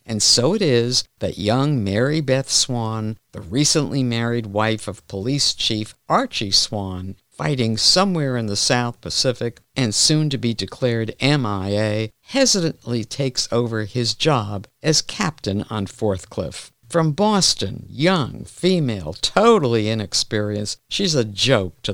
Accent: American